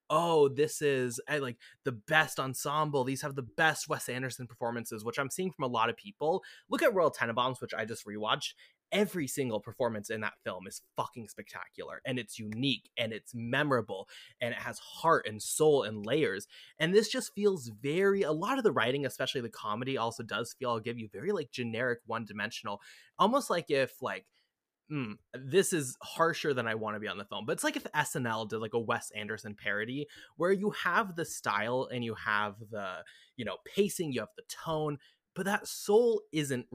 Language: English